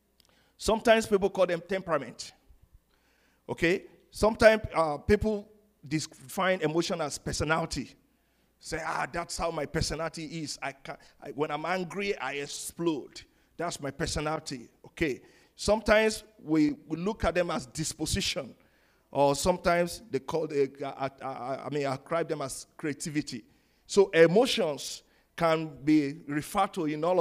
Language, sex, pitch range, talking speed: English, male, 140-185 Hz, 140 wpm